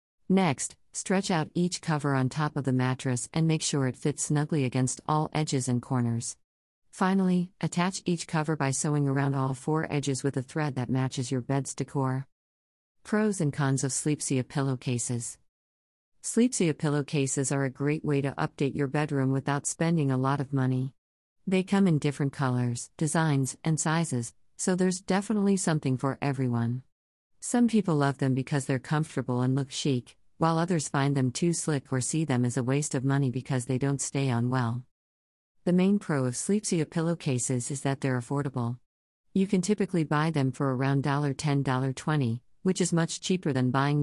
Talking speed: 175 wpm